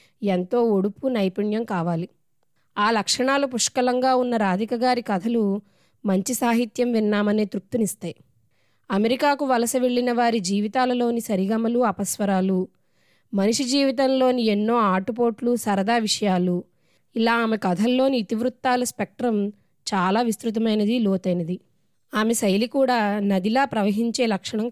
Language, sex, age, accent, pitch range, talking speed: Telugu, female, 20-39, native, 195-245 Hz, 100 wpm